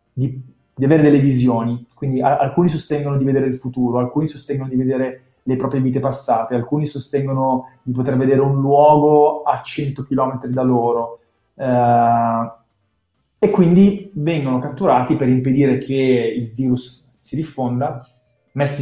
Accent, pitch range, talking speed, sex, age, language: native, 125-150 Hz, 145 wpm, male, 20-39, Italian